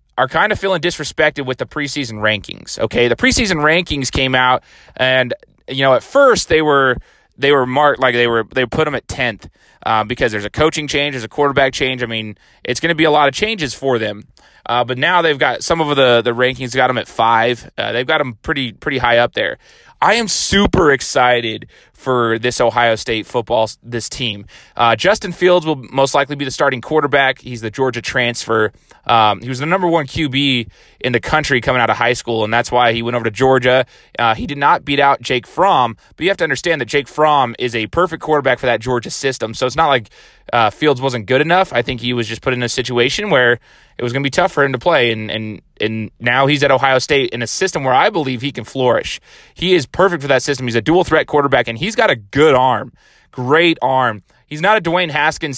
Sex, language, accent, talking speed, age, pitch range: male, English, American, 235 wpm, 20-39, 120-150 Hz